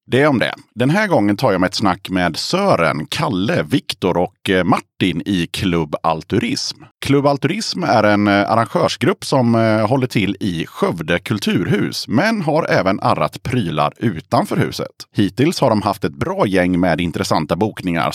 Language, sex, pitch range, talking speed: Swedish, male, 90-130 Hz, 160 wpm